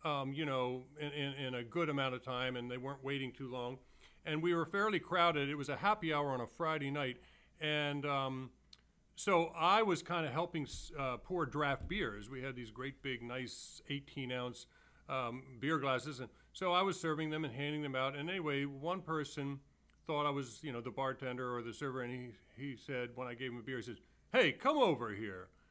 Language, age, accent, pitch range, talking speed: English, 40-59, American, 130-175 Hz, 210 wpm